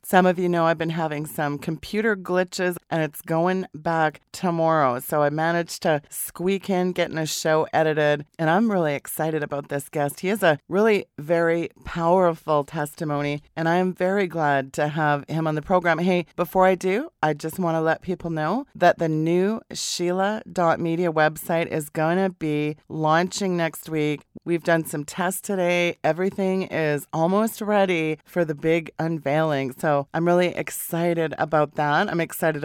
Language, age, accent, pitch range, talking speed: English, 40-59, American, 155-180 Hz, 170 wpm